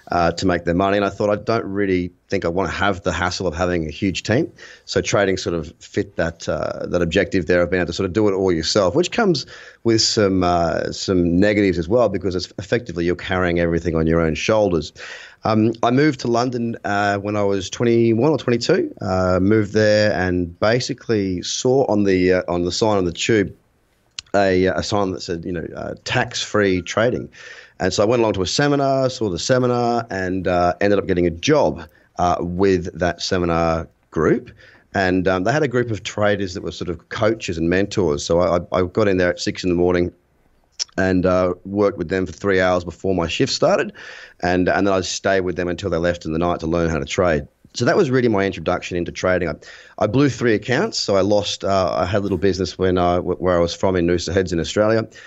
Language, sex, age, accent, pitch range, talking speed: English, male, 30-49, Australian, 90-105 Hz, 230 wpm